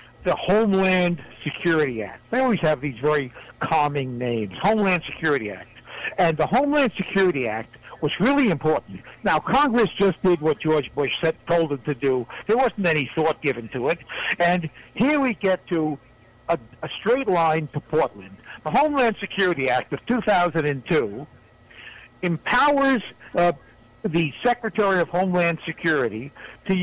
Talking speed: 150 wpm